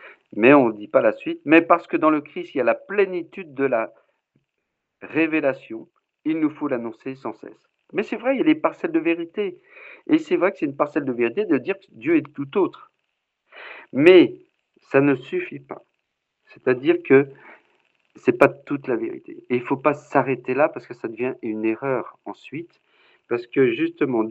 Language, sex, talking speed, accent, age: French, male, 205 wpm, French, 50-69